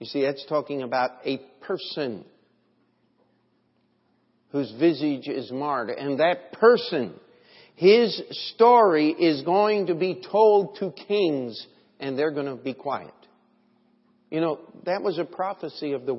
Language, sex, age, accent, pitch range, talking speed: English, male, 50-69, American, 125-160 Hz, 135 wpm